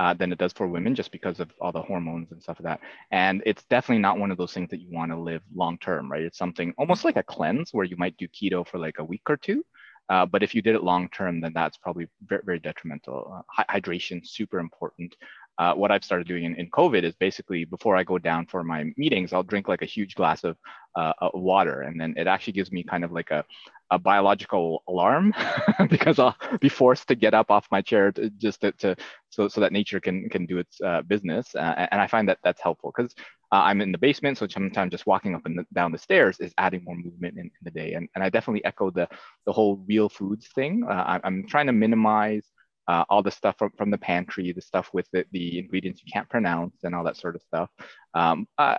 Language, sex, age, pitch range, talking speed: English, male, 20-39, 90-115 Hz, 250 wpm